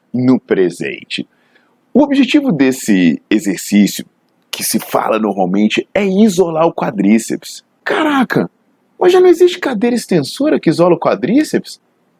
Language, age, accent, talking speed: Portuguese, 40-59, Brazilian, 125 wpm